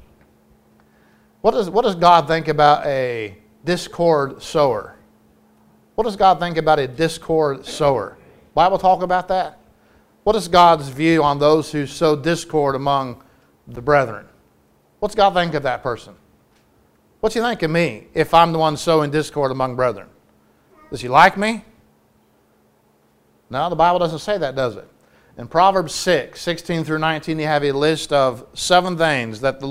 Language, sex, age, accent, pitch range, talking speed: English, male, 50-69, American, 140-180 Hz, 160 wpm